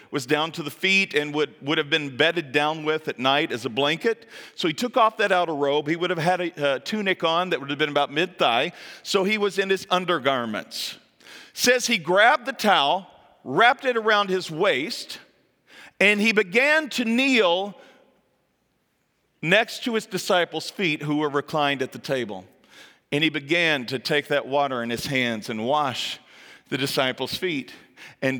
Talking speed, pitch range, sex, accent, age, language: 185 wpm, 145-215 Hz, male, American, 40-59, English